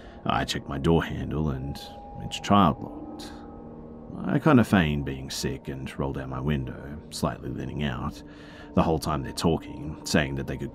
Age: 30-49